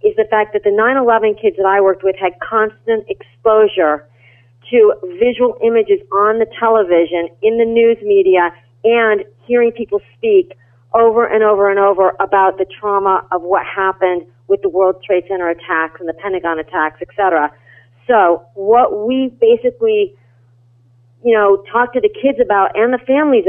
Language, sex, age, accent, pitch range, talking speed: English, female, 40-59, American, 180-245 Hz, 165 wpm